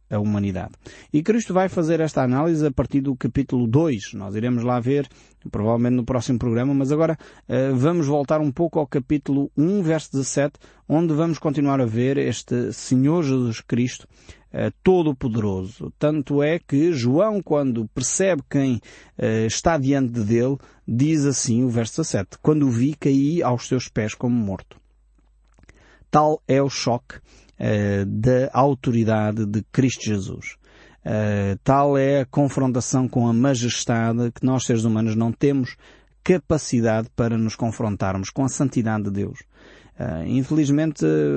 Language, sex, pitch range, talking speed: Portuguese, male, 115-145 Hz, 145 wpm